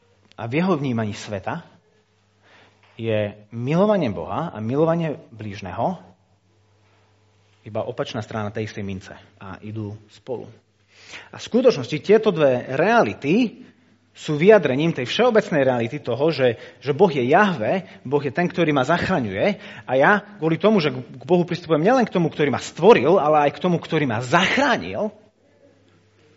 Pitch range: 105-170 Hz